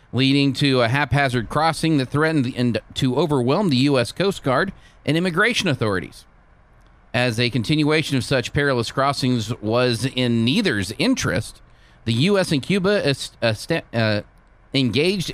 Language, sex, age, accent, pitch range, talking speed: English, male, 40-59, American, 115-170 Hz, 130 wpm